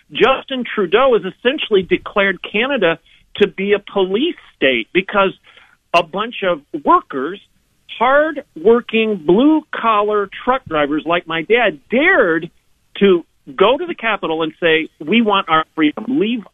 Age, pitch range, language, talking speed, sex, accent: 50-69, 155-235 Hz, English, 130 wpm, male, American